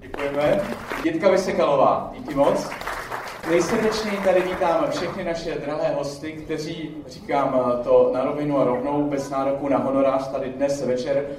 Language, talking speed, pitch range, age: Slovak, 135 wpm, 135-165 Hz, 40-59